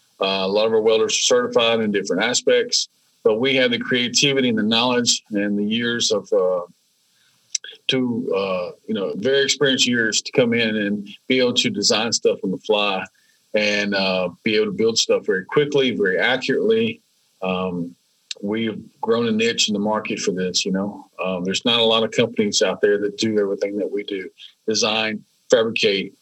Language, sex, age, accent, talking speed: English, male, 40-59, American, 190 wpm